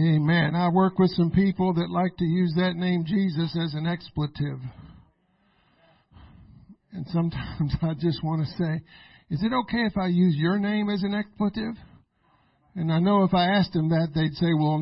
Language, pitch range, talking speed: English, 160-200 Hz, 180 wpm